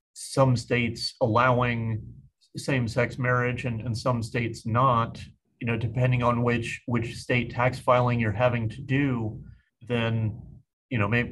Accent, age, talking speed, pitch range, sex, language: American, 40-59, 145 wpm, 115-130 Hz, male, English